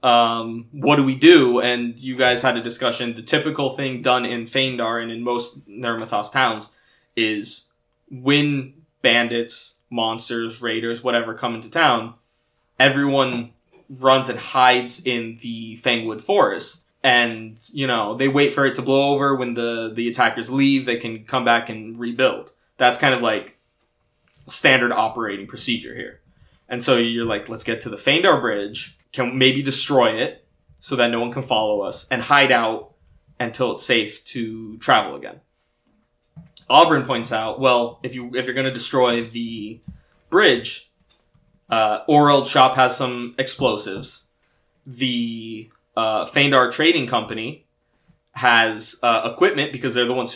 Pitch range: 115-130 Hz